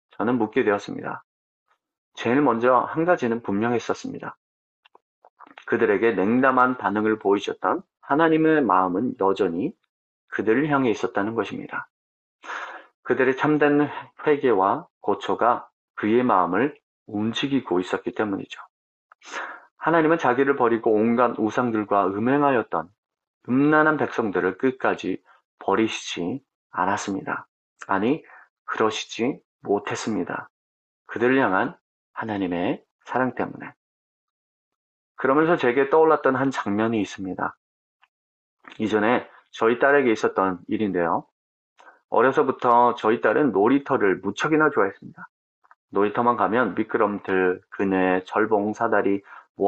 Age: 40-59